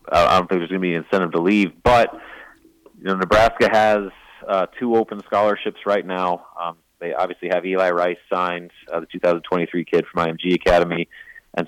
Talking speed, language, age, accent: 195 wpm, English, 30-49, American